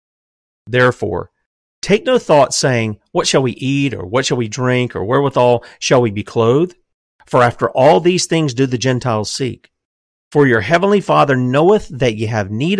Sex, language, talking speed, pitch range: male, English, 180 wpm, 115-170 Hz